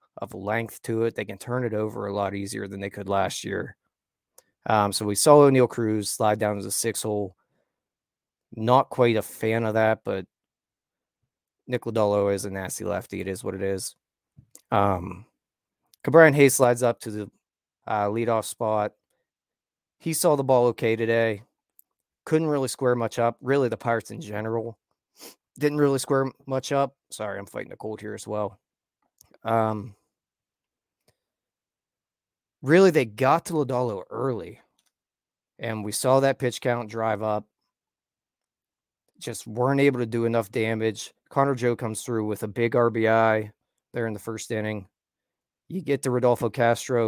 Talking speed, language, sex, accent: 160 wpm, English, male, American